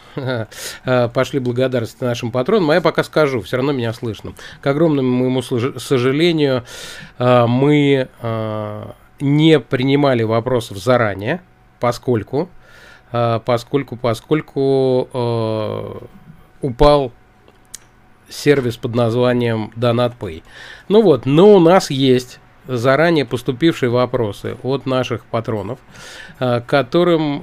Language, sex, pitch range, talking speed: Russian, male, 120-145 Hz, 90 wpm